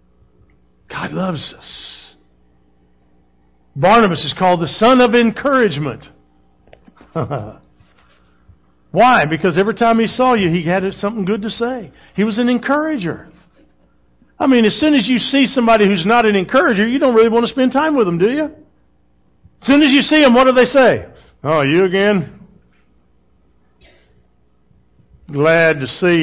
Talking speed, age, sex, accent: 150 wpm, 50-69, male, American